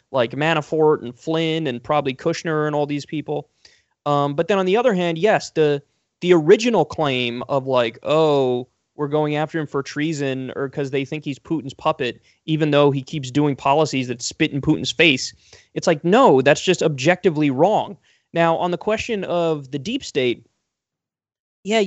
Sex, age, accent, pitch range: male, 20-39, American, 135-165 Hz